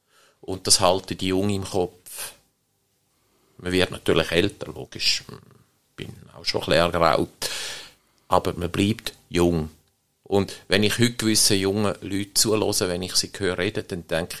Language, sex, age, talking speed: German, male, 50-69, 155 wpm